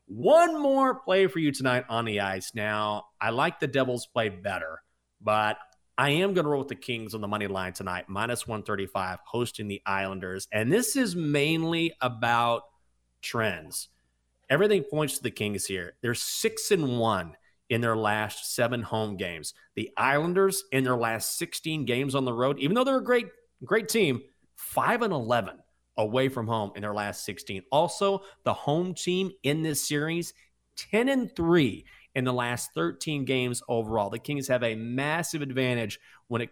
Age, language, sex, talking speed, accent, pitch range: 30-49, English, male, 175 wpm, American, 105-155 Hz